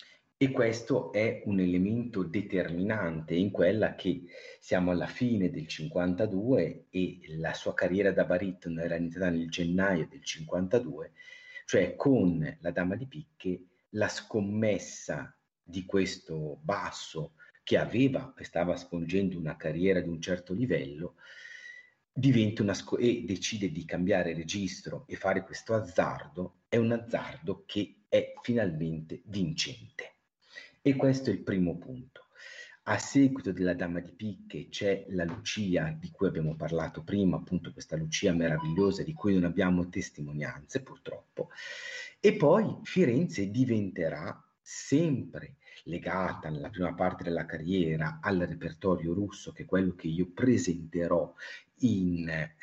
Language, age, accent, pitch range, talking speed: Italian, 40-59, native, 85-115 Hz, 130 wpm